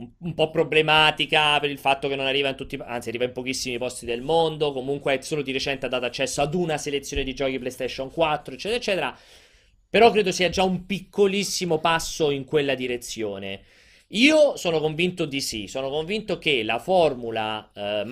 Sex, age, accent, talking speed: male, 30-49, native, 185 wpm